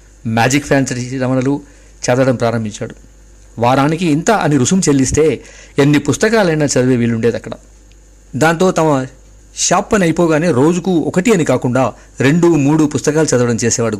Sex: male